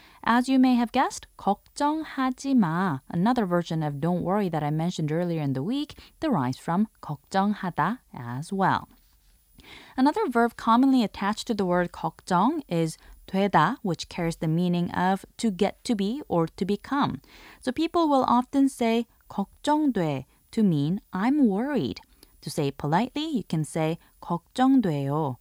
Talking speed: 150 wpm